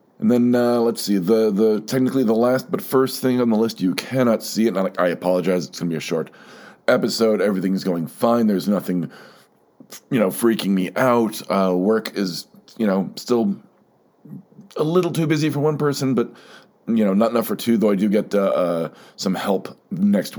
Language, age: English, 40-59